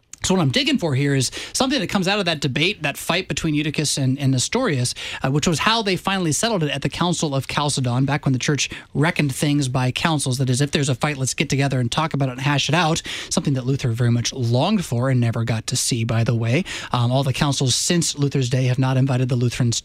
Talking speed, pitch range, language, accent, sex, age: 260 wpm, 135-190 Hz, English, American, male, 20-39